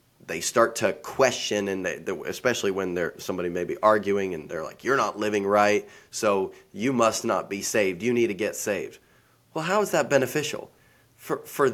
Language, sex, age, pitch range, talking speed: English, male, 20-39, 105-125 Hz, 200 wpm